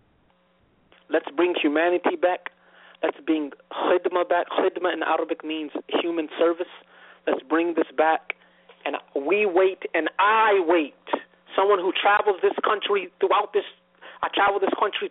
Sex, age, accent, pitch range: male, 40-59, American, 155-255 Hz